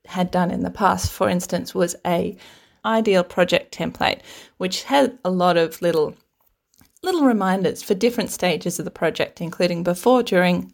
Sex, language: female, English